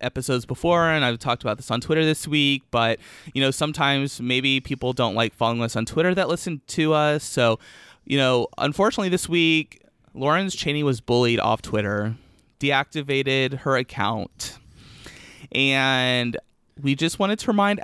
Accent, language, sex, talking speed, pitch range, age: American, English, male, 160 wpm, 125-155 Hz, 30-49